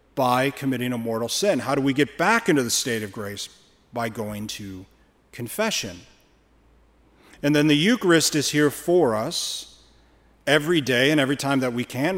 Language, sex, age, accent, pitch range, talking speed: English, male, 40-59, American, 115-150 Hz, 170 wpm